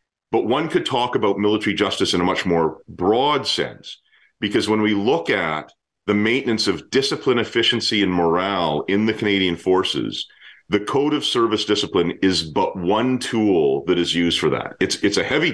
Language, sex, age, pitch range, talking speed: English, male, 40-59, 90-115 Hz, 180 wpm